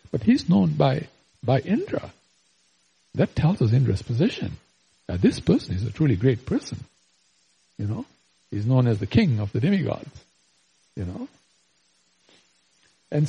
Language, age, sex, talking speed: English, 60-79, male, 145 wpm